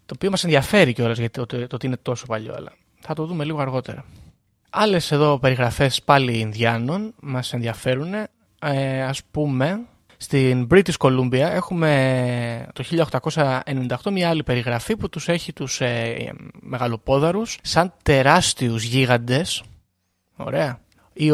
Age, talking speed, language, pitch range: 20-39, 140 wpm, Greek, 125-160 Hz